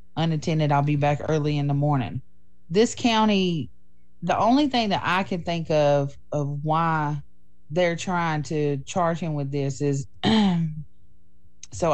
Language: English